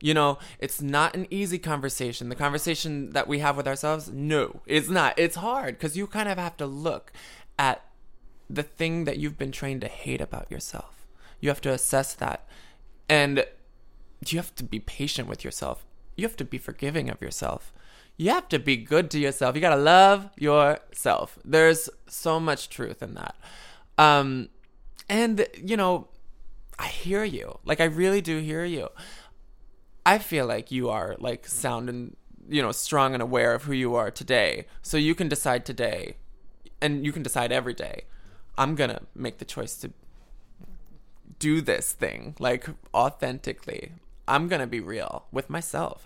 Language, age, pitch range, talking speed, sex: English, 20-39, 135-170 Hz, 175 wpm, male